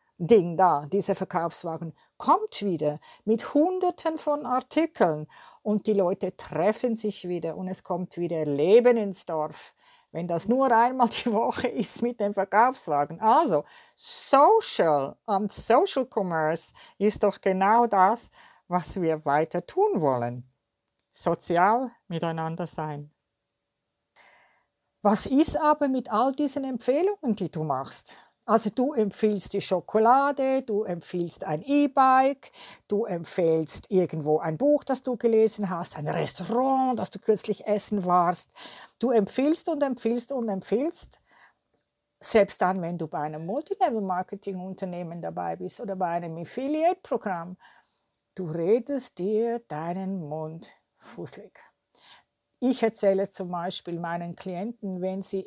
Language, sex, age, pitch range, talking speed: German, female, 50-69, 175-245 Hz, 130 wpm